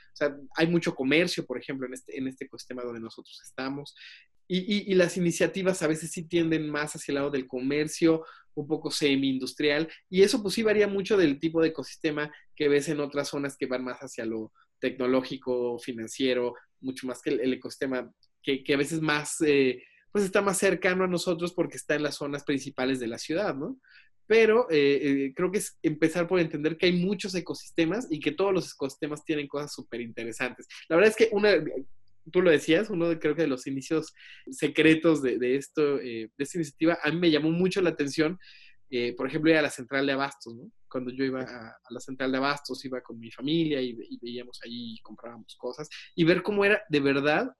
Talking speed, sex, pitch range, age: 215 wpm, male, 130-165 Hz, 30-49